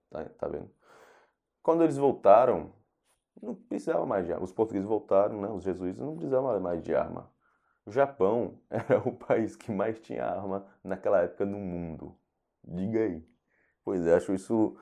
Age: 20-39